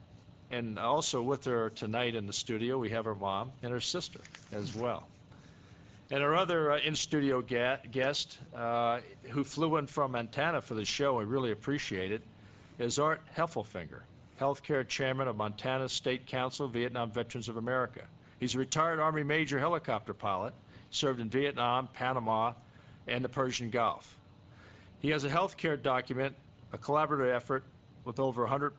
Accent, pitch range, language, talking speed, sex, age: American, 115-140 Hz, English, 155 wpm, male, 50-69